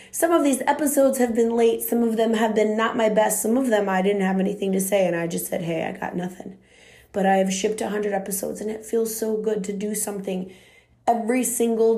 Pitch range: 190-230 Hz